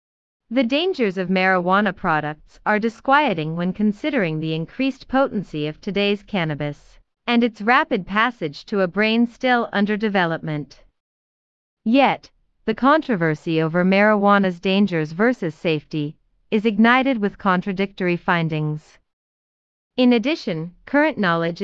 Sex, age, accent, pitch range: female, 30-49, American, 175-230 Hz